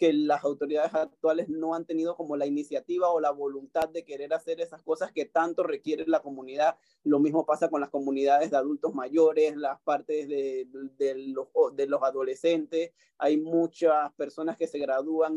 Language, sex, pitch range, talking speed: Spanish, male, 150-175 Hz, 180 wpm